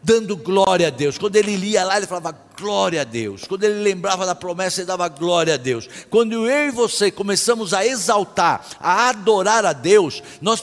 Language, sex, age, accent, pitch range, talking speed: Portuguese, male, 60-79, Brazilian, 185-240 Hz, 200 wpm